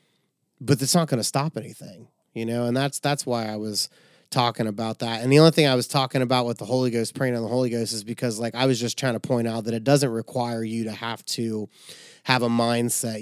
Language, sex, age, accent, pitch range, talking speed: English, male, 30-49, American, 115-130 Hz, 255 wpm